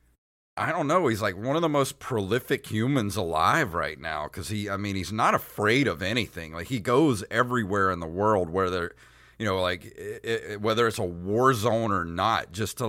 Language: English